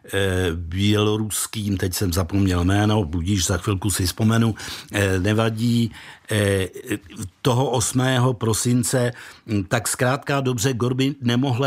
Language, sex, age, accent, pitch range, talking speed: Czech, male, 60-79, native, 100-125 Hz, 100 wpm